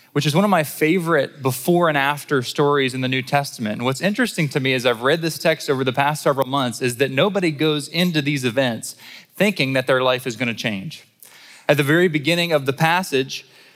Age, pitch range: 20-39, 125-155 Hz